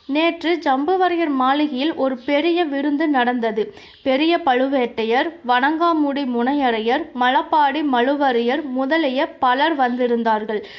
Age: 20-39